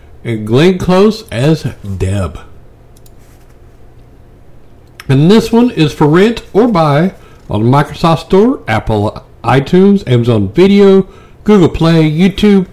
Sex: male